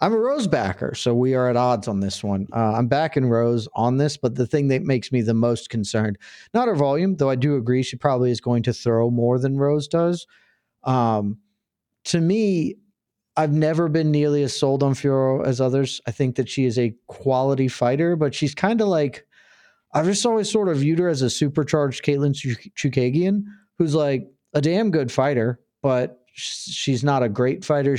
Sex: male